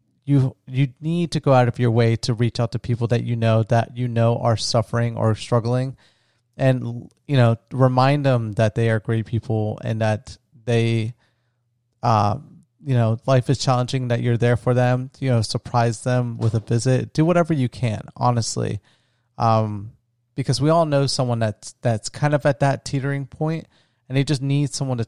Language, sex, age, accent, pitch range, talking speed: English, male, 30-49, American, 115-135 Hz, 190 wpm